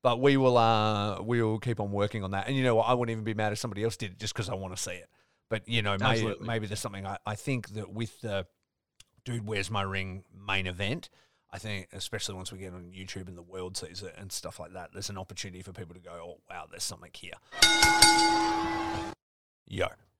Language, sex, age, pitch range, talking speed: English, male, 30-49, 95-120 Hz, 240 wpm